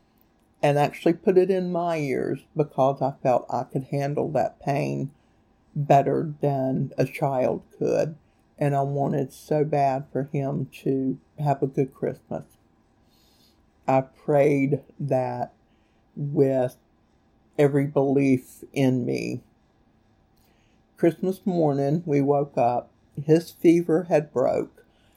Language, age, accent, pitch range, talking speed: English, 60-79, American, 130-150 Hz, 115 wpm